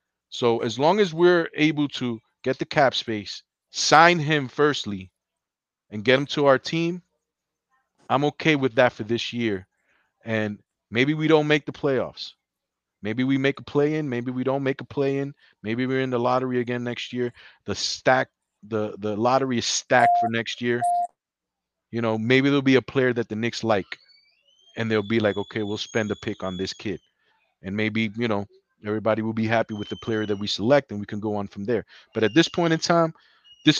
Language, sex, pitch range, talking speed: English, male, 115-150 Hz, 205 wpm